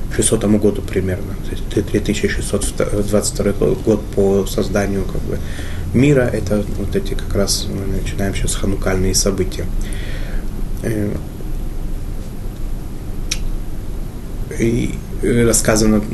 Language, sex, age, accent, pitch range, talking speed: Russian, male, 20-39, native, 95-110 Hz, 85 wpm